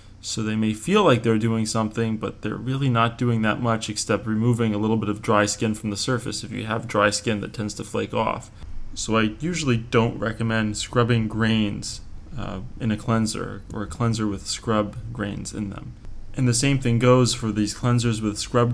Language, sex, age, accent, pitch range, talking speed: English, male, 20-39, American, 105-120 Hz, 210 wpm